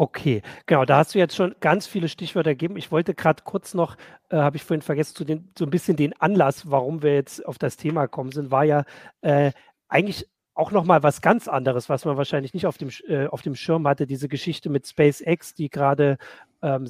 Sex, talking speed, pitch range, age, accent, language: male, 225 wpm, 140-165 Hz, 40-59, German, German